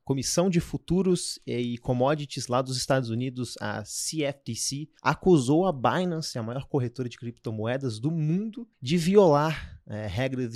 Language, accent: Portuguese, Brazilian